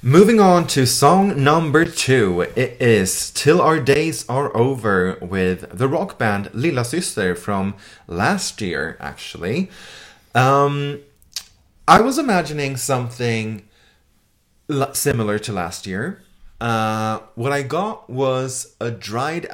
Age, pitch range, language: 30-49, 100-135 Hz, English